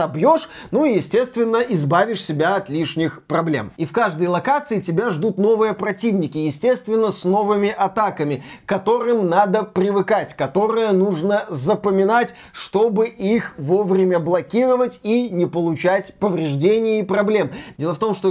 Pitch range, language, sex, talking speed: 185-225 Hz, Russian, male, 135 wpm